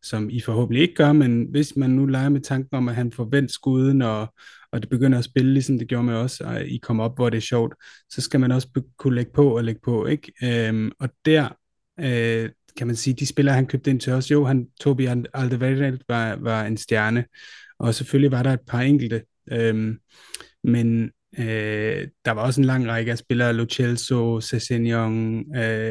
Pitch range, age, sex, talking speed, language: 115-140 Hz, 30-49, male, 210 wpm, Danish